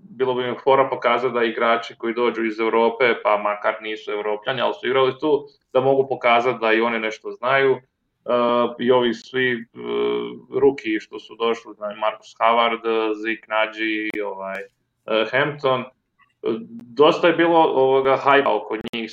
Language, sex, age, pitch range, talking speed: English, male, 20-39, 115-145 Hz, 155 wpm